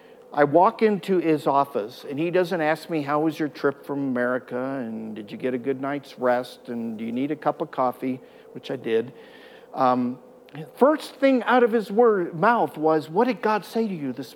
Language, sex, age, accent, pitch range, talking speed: English, male, 50-69, American, 155-235 Hz, 210 wpm